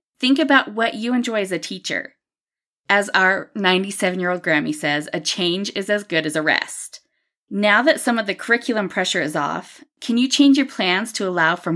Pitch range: 180-240 Hz